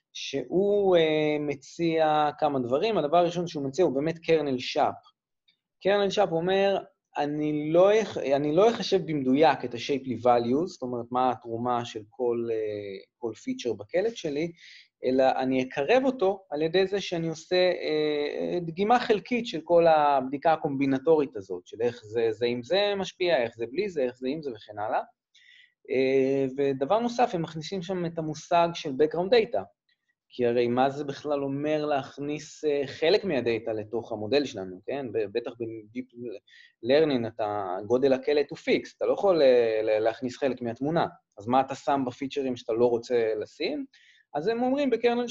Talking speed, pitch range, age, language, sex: 155 wpm, 130-195 Hz, 30-49, Hebrew, male